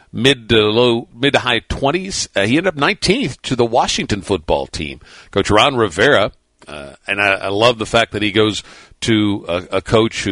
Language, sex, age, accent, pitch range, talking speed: English, male, 50-69, American, 90-110 Hz, 205 wpm